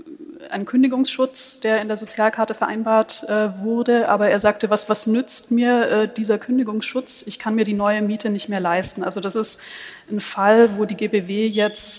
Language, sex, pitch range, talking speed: German, female, 205-235 Hz, 185 wpm